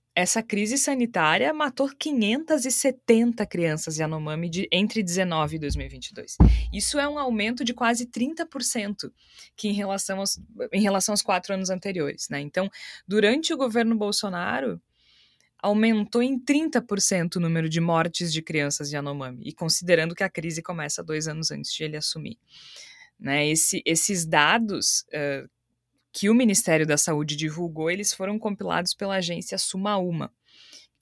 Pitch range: 155-220 Hz